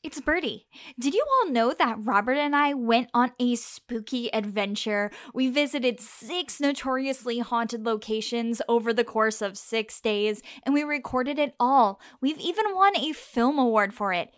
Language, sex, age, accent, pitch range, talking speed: English, female, 10-29, American, 220-310 Hz, 165 wpm